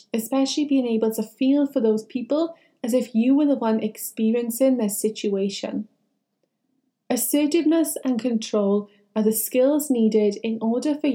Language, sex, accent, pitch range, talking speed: English, female, British, 220-280 Hz, 145 wpm